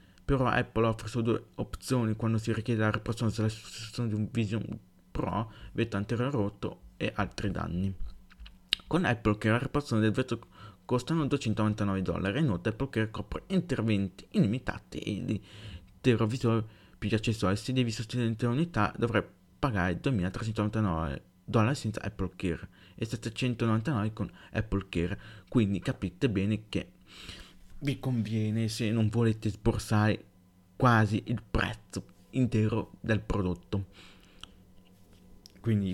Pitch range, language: 95-115 Hz, Italian